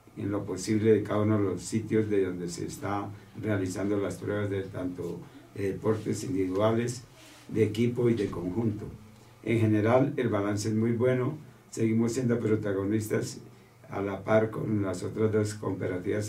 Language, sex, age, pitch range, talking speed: Spanish, male, 60-79, 100-115 Hz, 160 wpm